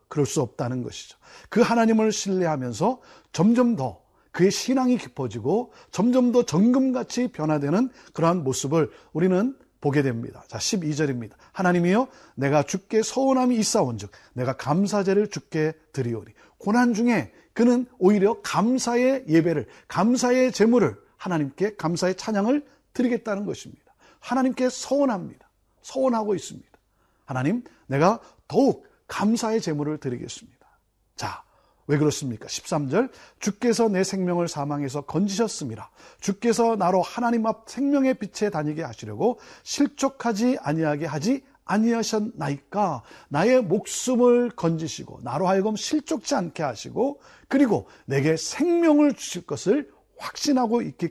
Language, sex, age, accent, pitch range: Korean, male, 40-59, native, 155-245 Hz